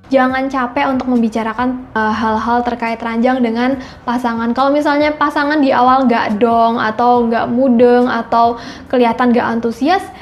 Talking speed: 140 wpm